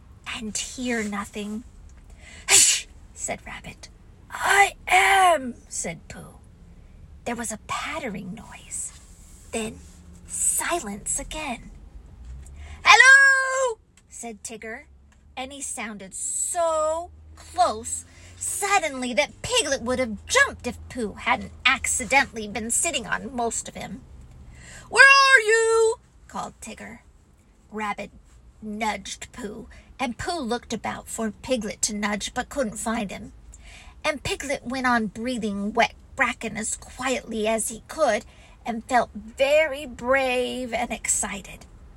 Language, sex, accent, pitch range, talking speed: English, female, American, 205-270 Hz, 115 wpm